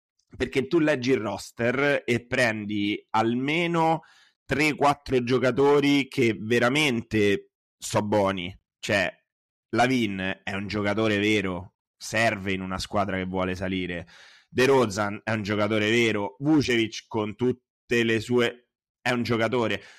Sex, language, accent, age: male, Italian, native, 30-49